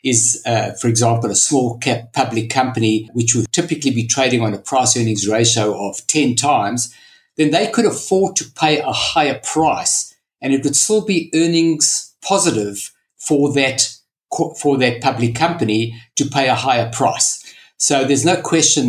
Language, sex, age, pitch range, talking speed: English, male, 60-79, 115-140 Hz, 170 wpm